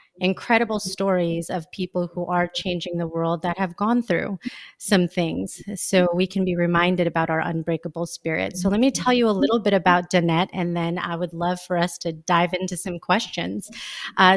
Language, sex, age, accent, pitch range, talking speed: English, female, 30-49, American, 180-225 Hz, 195 wpm